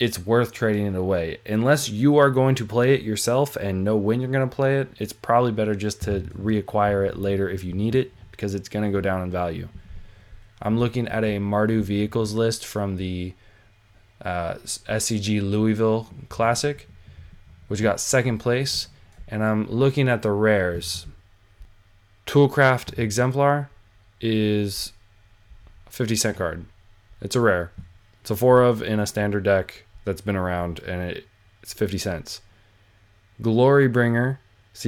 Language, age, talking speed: English, 20-39, 155 wpm